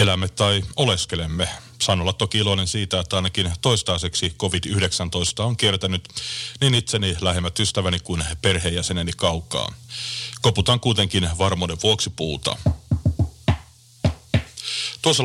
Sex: male